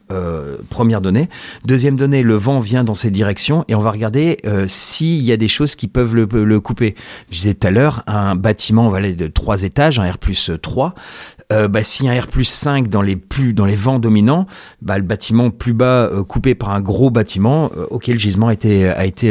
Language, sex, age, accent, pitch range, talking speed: French, male, 40-59, French, 95-120 Hz, 235 wpm